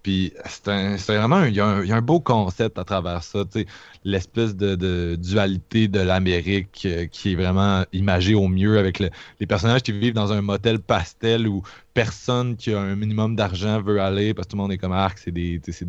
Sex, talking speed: male, 210 wpm